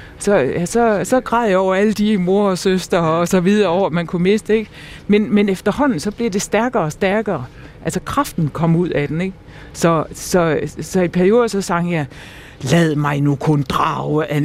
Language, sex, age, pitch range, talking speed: Danish, female, 60-79, 155-200 Hz, 210 wpm